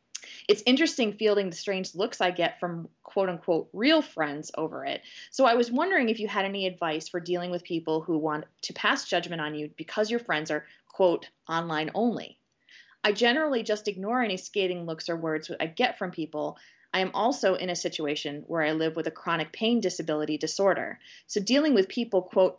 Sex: female